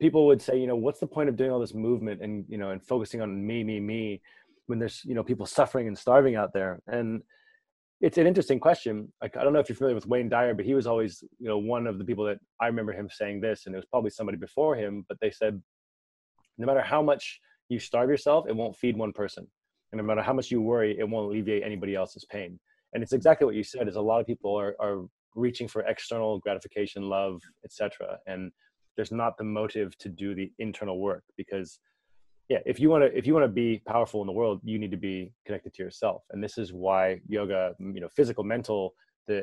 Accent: American